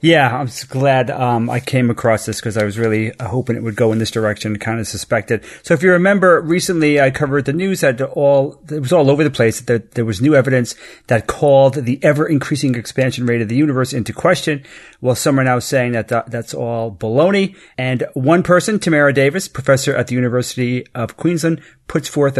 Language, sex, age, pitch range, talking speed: English, male, 40-59, 120-150 Hz, 215 wpm